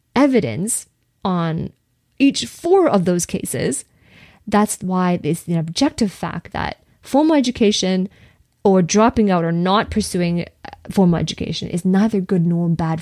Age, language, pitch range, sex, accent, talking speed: 20-39, English, 175-215 Hz, female, American, 135 wpm